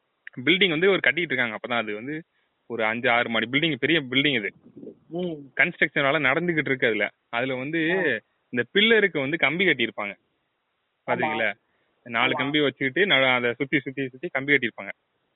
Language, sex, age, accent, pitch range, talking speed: Tamil, male, 20-39, native, 130-175 Hz, 45 wpm